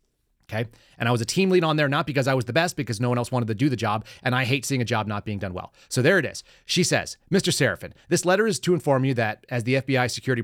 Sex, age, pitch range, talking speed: male, 30-49, 110-135 Hz, 300 wpm